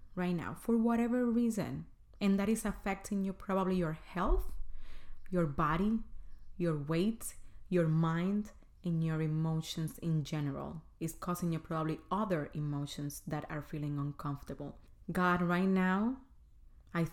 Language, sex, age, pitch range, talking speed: Spanish, female, 30-49, 155-200 Hz, 135 wpm